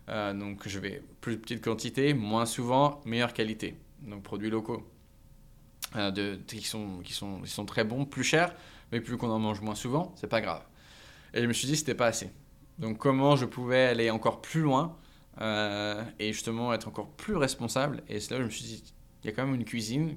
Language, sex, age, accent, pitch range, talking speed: French, male, 20-39, French, 110-135 Hz, 225 wpm